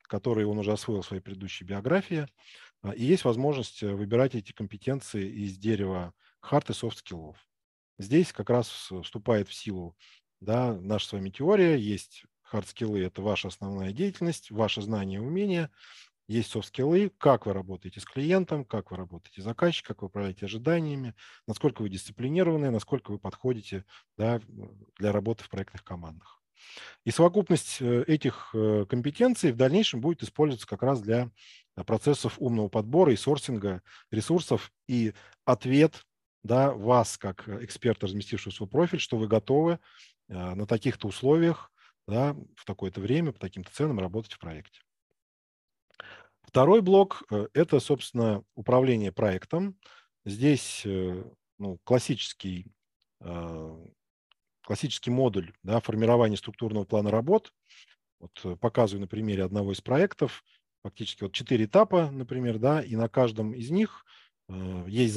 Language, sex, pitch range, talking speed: Russian, male, 100-135 Hz, 130 wpm